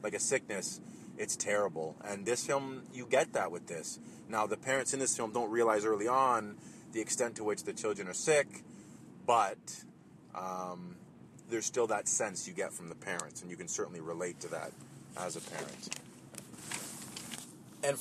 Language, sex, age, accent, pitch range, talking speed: English, male, 30-49, American, 105-130 Hz, 175 wpm